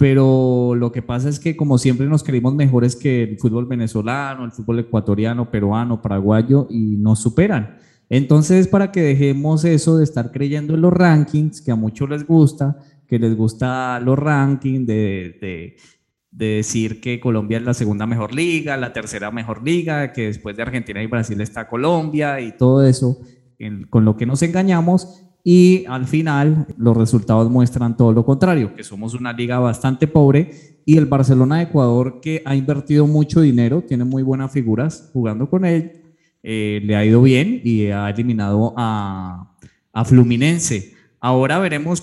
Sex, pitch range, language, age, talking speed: male, 115-150 Hz, Spanish, 20-39, 175 wpm